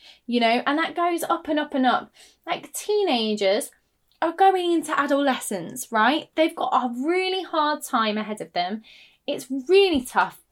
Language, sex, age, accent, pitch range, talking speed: English, female, 10-29, British, 210-275 Hz, 165 wpm